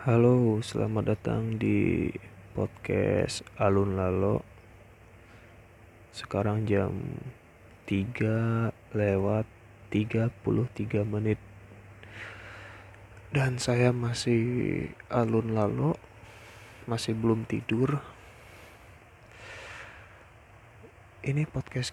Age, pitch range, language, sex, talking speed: 20-39, 105-115 Hz, Indonesian, male, 65 wpm